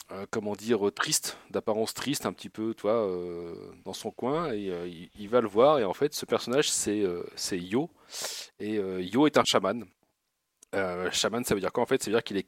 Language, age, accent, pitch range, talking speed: French, 40-59, French, 95-130 Hz, 230 wpm